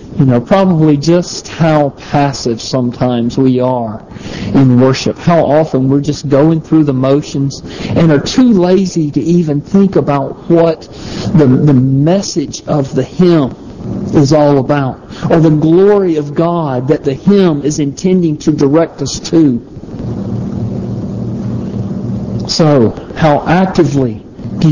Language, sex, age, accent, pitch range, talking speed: English, male, 50-69, American, 135-185 Hz, 135 wpm